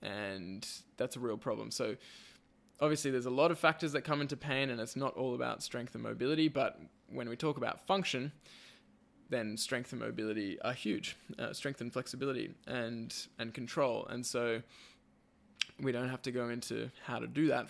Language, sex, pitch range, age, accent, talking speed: English, male, 120-140 Hz, 20-39, Australian, 185 wpm